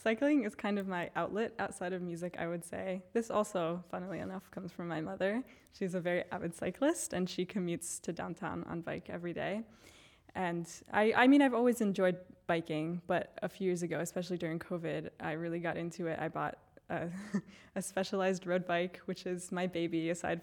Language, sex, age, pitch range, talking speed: English, female, 10-29, 170-200 Hz, 195 wpm